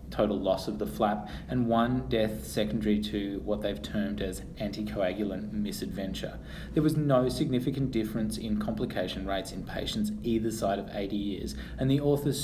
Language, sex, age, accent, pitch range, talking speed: English, male, 20-39, Australian, 105-120 Hz, 165 wpm